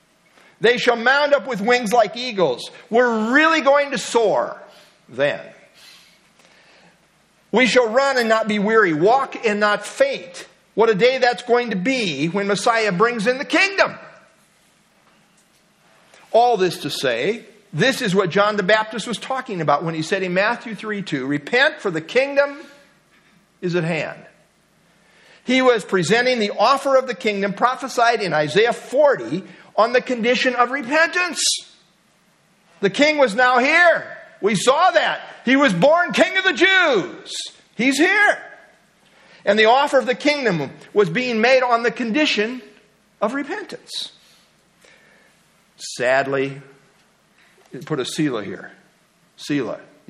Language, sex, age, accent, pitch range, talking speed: English, male, 50-69, American, 200-270 Hz, 140 wpm